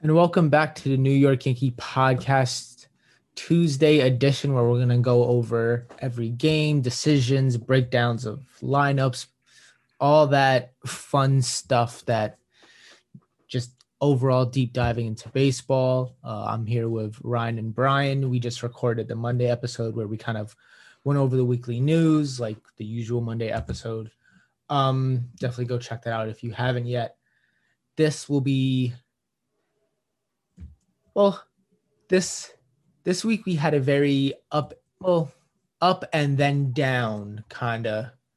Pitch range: 120-140 Hz